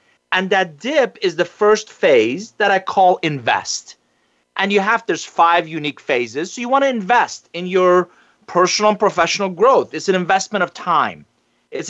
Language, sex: English, male